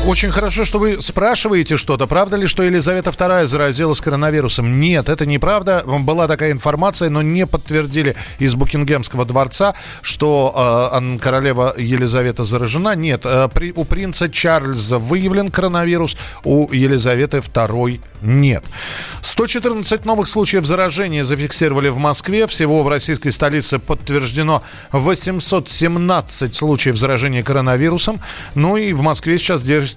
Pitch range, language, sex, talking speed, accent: 135-180 Hz, Russian, male, 125 wpm, native